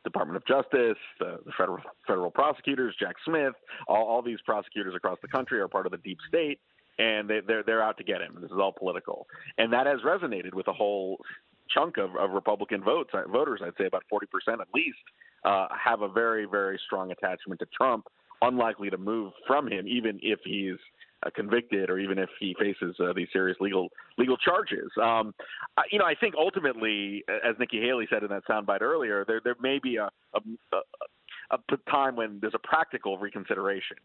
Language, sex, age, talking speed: English, male, 40-59, 200 wpm